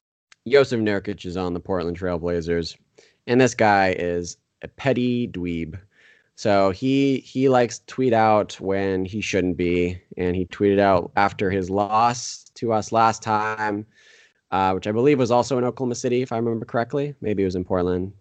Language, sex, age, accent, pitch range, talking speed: English, male, 20-39, American, 95-115 Hz, 180 wpm